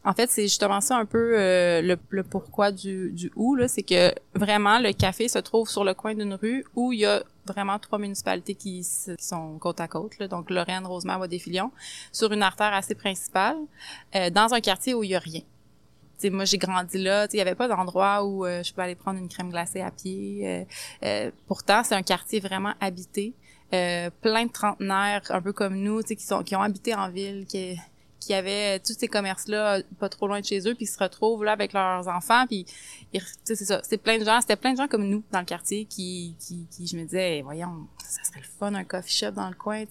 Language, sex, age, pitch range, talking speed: French, female, 20-39, 180-210 Hz, 240 wpm